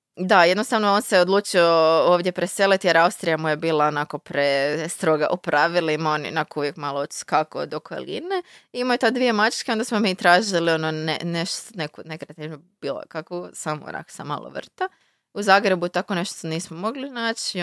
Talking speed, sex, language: 175 wpm, female, Croatian